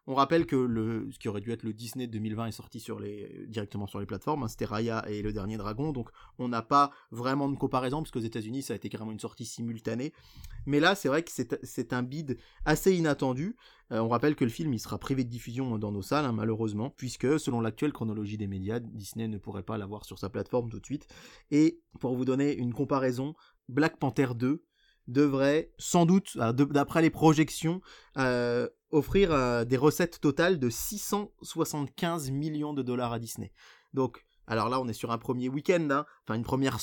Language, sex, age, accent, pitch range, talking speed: French, male, 20-39, French, 115-150 Hz, 210 wpm